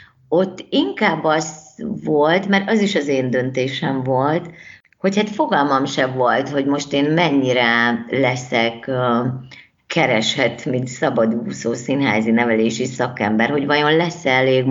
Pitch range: 130-170 Hz